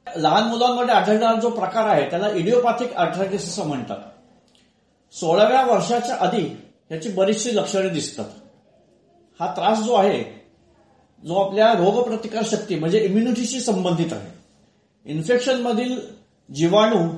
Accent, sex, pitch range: native, male, 185-235 Hz